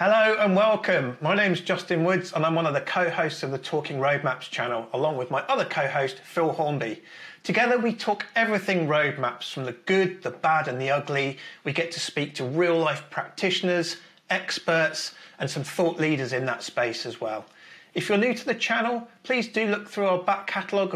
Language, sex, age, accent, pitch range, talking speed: English, male, 40-59, British, 150-190 Hz, 200 wpm